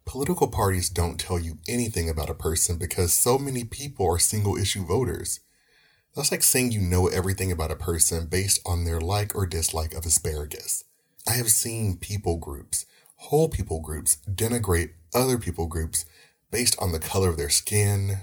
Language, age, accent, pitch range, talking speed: English, 30-49, American, 85-100 Hz, 170 wpm